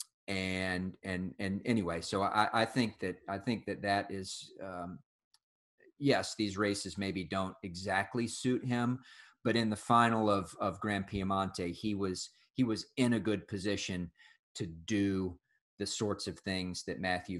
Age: 40-59